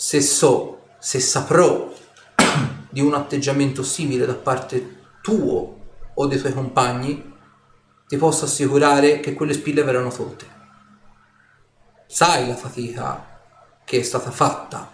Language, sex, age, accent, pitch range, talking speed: Italian, male, 30-49, native, 125-150 Hz, 120 wpm